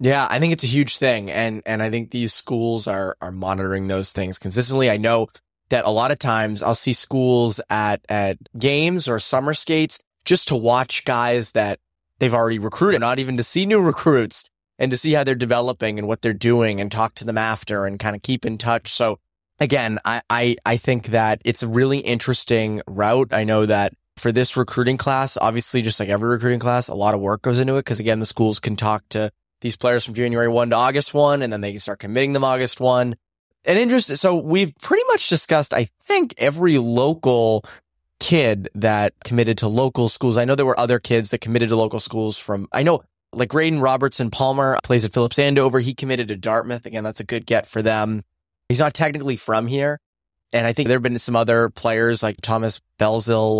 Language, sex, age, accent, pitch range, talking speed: English, male, 20-39, American, 110-130 Hz, 215 wpm